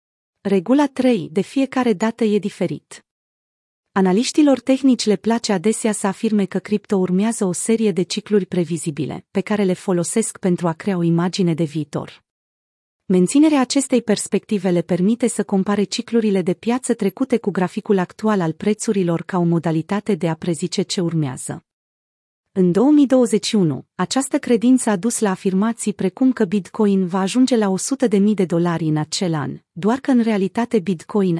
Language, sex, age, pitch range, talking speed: Romanian, female, 30-49, 185-225 Hz, 160 wpm